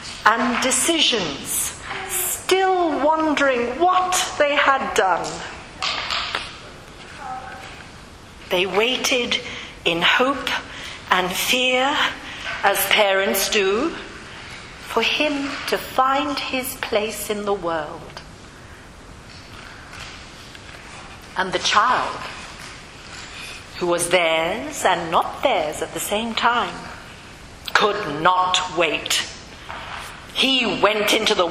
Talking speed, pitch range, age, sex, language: 90 wpm, 200-275 Hz, 50-69, female, English